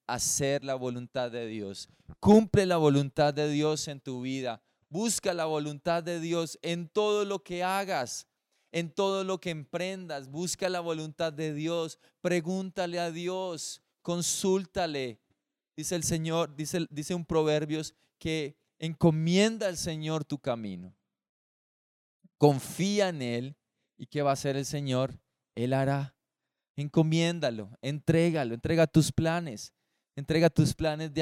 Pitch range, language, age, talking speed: 140-170 Hz, Spanish, 20-39, 135 wpm